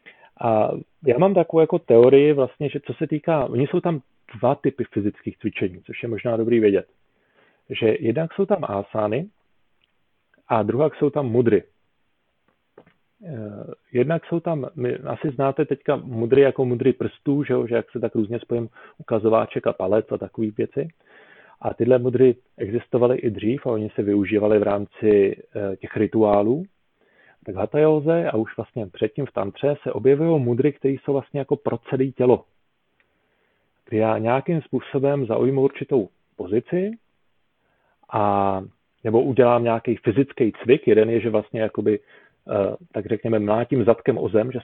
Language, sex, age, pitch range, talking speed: Slovak, male, 40-59, 110-145 Hz, 155 wpm